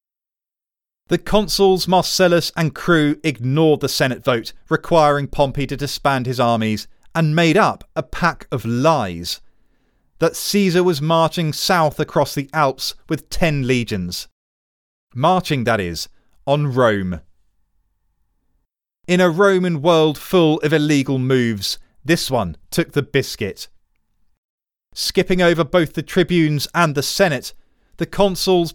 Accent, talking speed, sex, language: British, 125 wpm, male, English